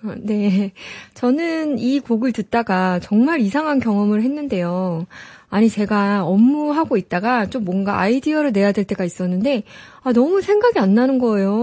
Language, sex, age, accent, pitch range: Korean, female, 20-39, native, 200-270 Hz